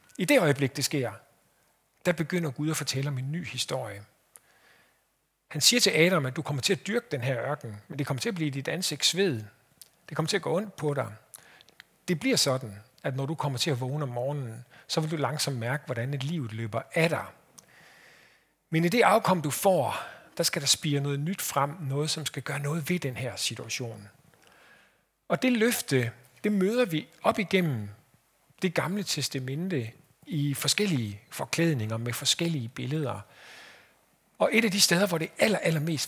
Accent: native